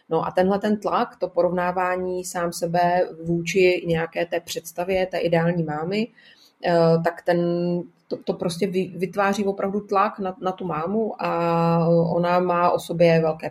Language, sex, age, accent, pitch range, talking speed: Czech, female, 30-49, native, 160-180 Hz, 150 wpm